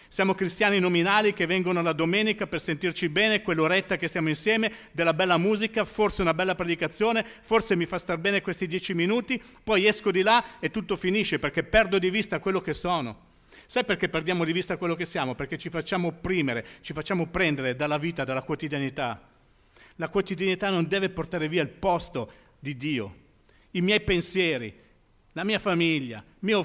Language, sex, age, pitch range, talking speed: Italian, male, 50-69, 160-200 Hz, 180 wpm